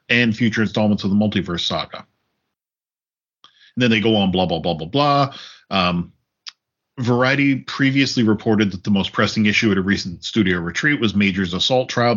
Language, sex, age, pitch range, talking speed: English, male, 40-59, 100-120 Hz, 175 wpm